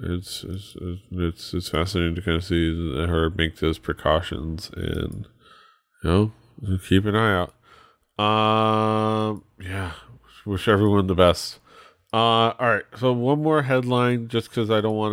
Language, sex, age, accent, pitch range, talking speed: English, male, 30-49, American, 95-115 Hz, 160 wpm